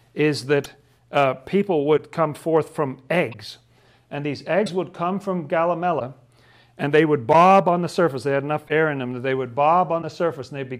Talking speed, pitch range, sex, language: 215 wpm, 140-170 Hz, male, English